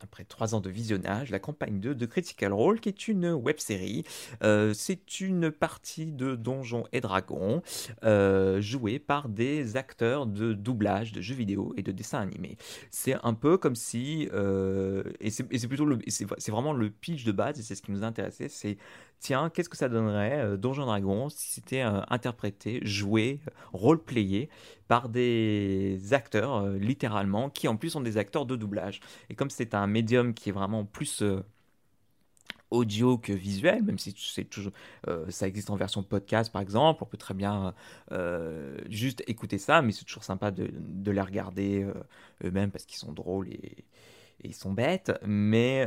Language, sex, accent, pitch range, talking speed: French, male, French, 100-130 Hz, 190 wpm